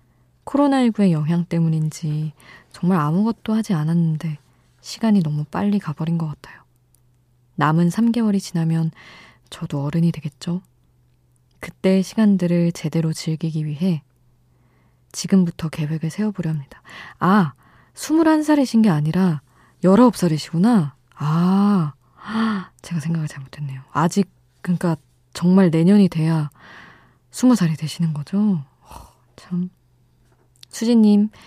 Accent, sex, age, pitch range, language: native, female, 20-39, 150-190 Hz, Korean